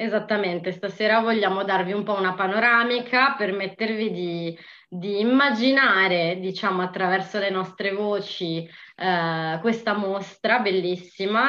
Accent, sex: native, female